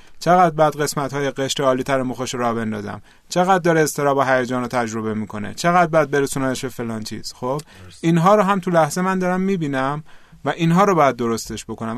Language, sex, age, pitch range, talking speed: Persian, male, 30-49, 125-165 Hz, 185 wpm